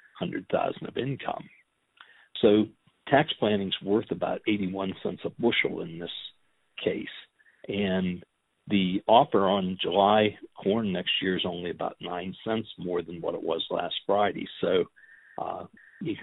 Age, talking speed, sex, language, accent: 60-79, 135 wpm, male, English, American